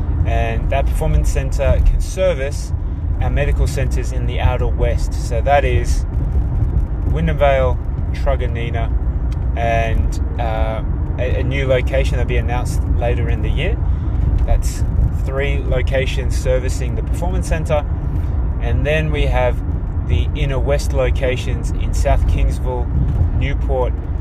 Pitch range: 75-100 Hz